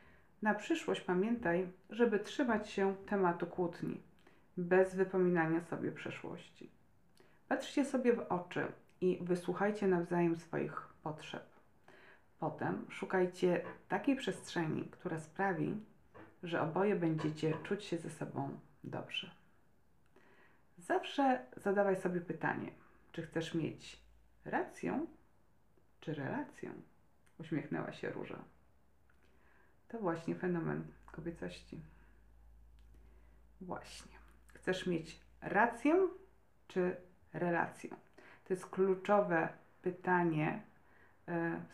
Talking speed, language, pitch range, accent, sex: 90 wpm, Polish, 160-195 Hz, native, female